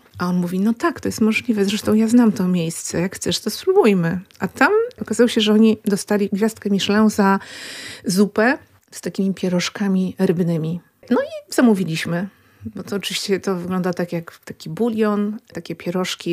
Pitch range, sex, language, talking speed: 180-220 Hz, female, Polish, 170 wpm